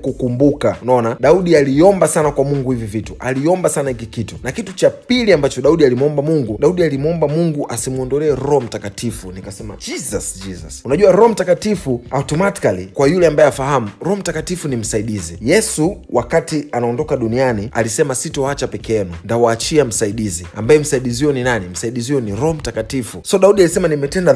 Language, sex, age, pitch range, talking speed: Swahili, male, 30-49, 120-170 Hz, 160 wpm